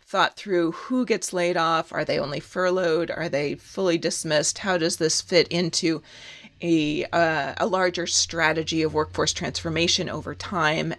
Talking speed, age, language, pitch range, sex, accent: 160 wpm, 30-49, English, 160-185 Hz, female, American